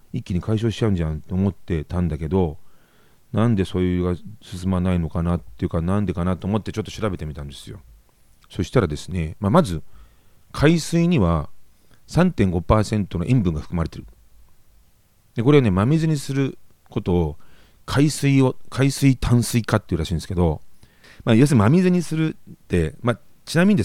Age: 40-59